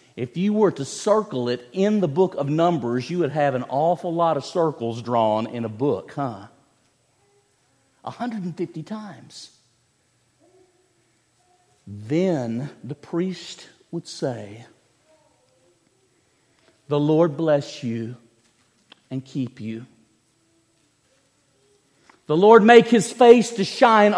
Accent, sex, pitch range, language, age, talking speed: American, male, 125-200 Hz, English, 50-69, 110 wpm